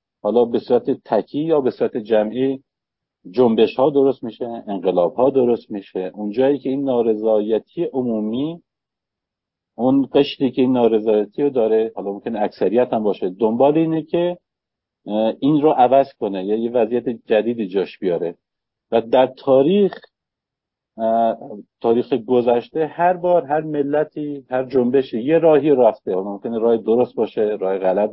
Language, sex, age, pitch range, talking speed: Persian, male, 50-69, 110-145 Hz, 140 wpm